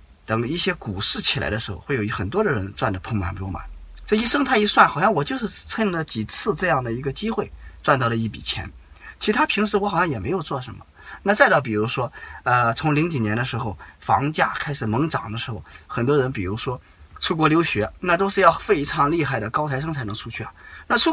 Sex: male